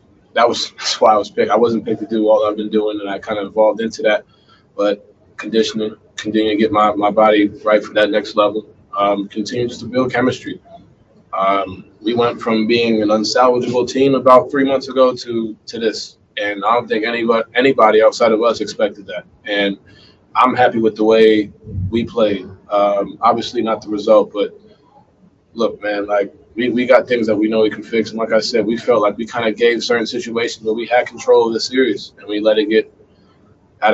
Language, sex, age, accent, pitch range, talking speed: English, male, 20-39, American, 105-125 Hz, 210 wpm